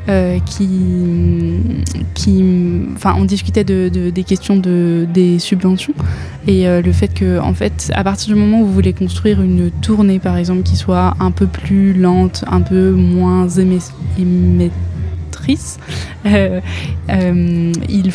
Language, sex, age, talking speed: French, female, 20-39, 150 wpm